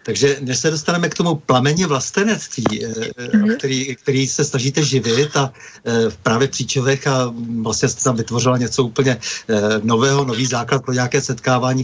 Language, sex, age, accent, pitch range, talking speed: Czech, male, 50-69, native, 130-150 Hz, 150 wpm